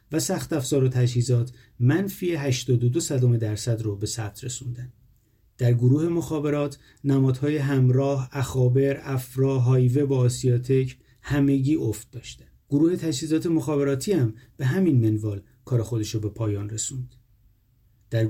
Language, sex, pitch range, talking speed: Persian, male, 120-145 Hz, 130 wpm